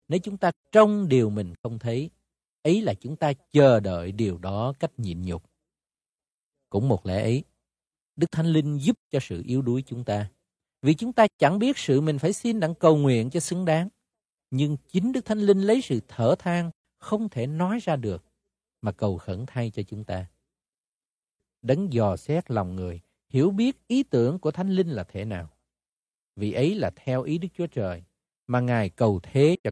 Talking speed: 195 wpm